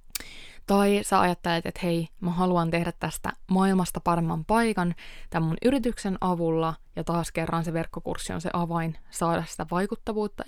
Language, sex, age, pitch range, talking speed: Finnish, female, 20-39, 165-190 Hz, 155 wpm